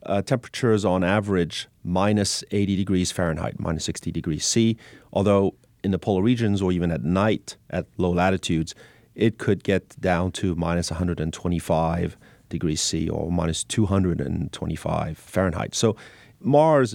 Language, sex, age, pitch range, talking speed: English, male, 30-49, 90-120 Hz, 140 wpm